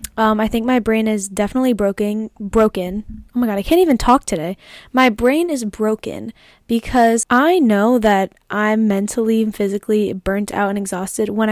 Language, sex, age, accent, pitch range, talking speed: English, female, 10-29, American, 200-230 Hz, 175 wpm